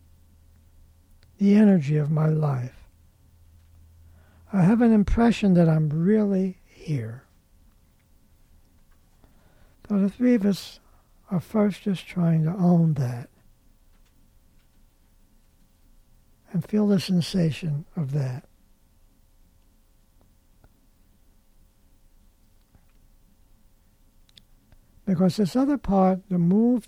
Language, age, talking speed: English, 60-79, 85 wpm